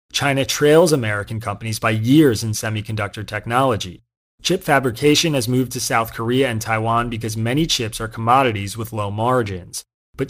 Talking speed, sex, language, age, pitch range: 155 wpm, male, English, 30-49, 110-135 Hz